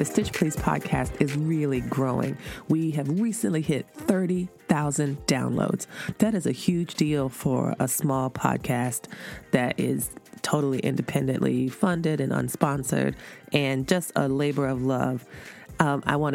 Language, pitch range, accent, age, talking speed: English, 135-170 Hz, American, 30-49, 140 wpm